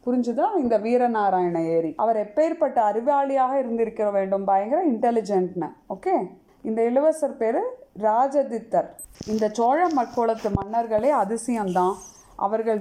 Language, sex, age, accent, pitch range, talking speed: Tamil, female, 30-49, native, 205-275 Hz, 105 wpm